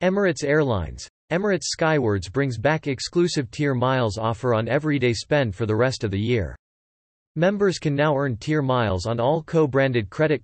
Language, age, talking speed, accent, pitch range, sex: English, 40-59, 165 wpm, American, 115-150 Hz, male